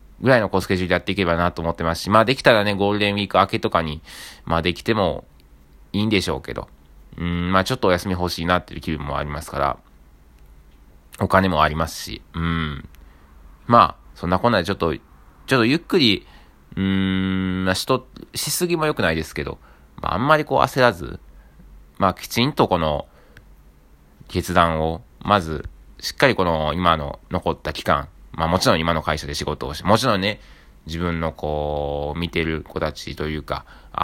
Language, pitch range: Japanese, 75-100 Hz